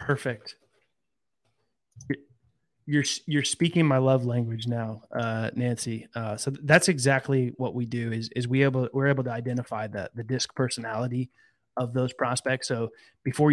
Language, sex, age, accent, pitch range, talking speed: English, male, 30-49, American, 115-135 Hz, 150 wpm